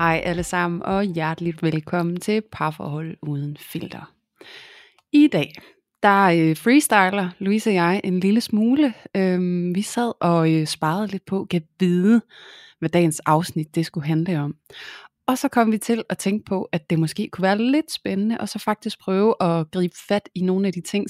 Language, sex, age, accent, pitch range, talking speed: Danish, female, 30-49, native, 165-205 Hz, 175 wpm